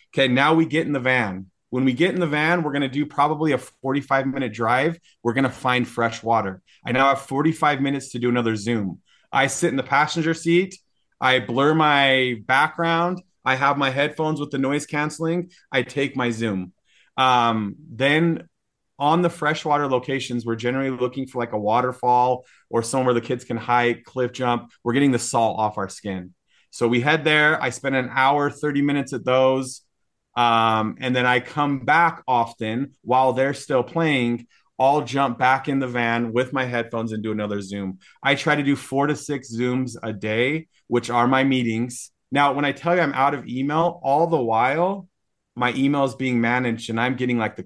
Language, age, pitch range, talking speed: English, 30-49, 120-145 Hz, 200 wpm